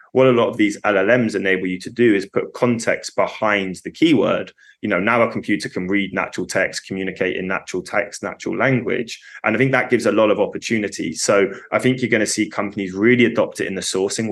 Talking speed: 225 wpm